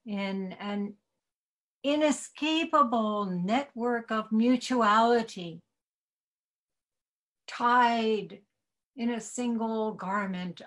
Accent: American